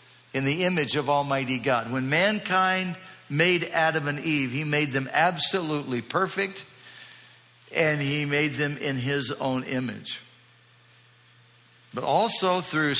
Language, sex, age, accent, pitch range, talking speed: English, male, 60-79, American, 135-200 Hz, 130 wpm